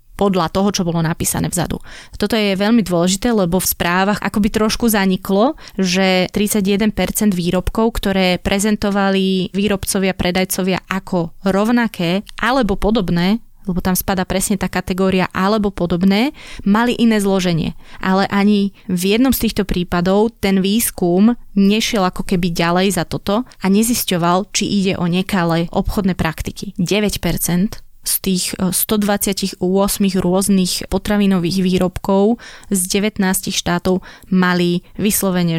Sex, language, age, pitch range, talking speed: female, Slovak, 20-39, 175-200 Hz, 125 wpm